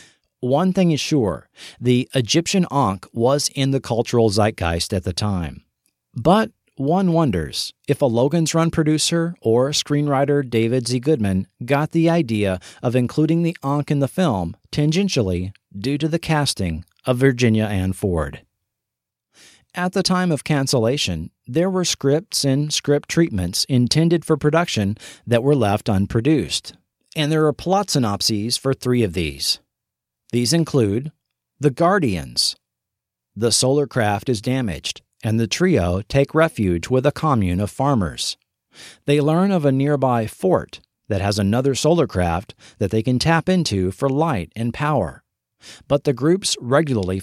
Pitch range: 105-150 Hz